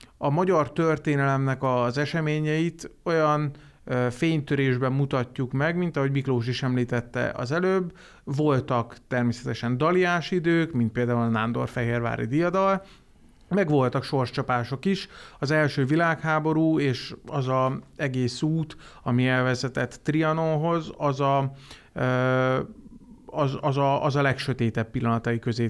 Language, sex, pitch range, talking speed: Hungarian, male, 120-150 Hz, 105 wpm